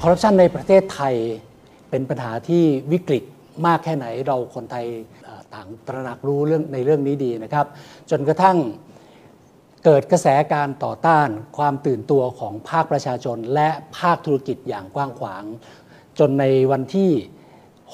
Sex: male